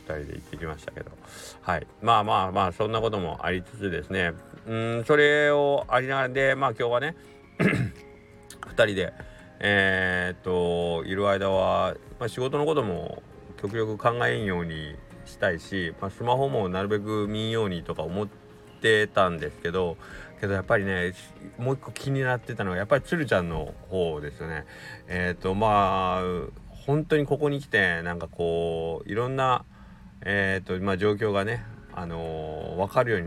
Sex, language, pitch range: male, Japanese, 90-115 Hz